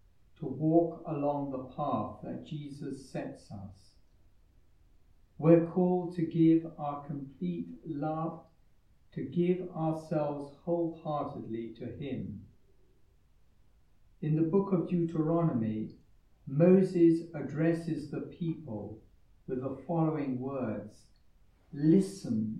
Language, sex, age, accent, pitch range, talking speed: English, male, 60-79, British, 110-160 Hz, 95 wpm